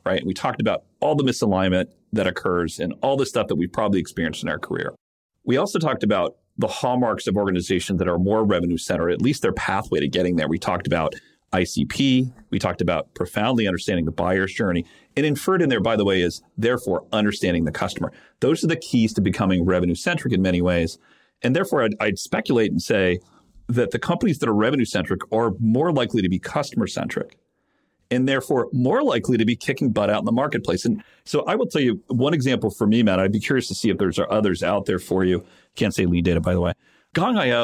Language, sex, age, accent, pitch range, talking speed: English, male, 40-59, American, 90-110 Hz, 225 wpm